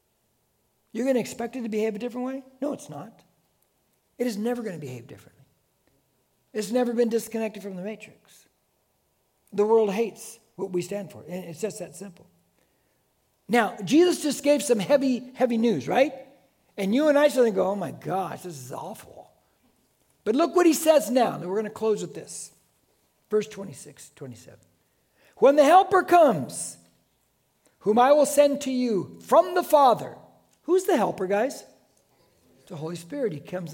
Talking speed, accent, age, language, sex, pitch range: 180 wpm, American, 60-79, English, male, 205-270 Hz